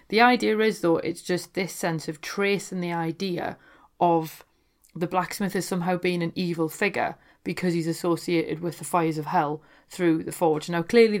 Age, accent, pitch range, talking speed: 30-49, British, 160-180 Hz, 180 wpm